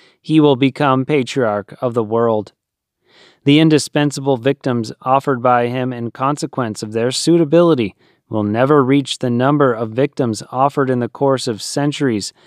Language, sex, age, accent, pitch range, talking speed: English, male, 30-49, American, 120-145 Hz, 150 wpm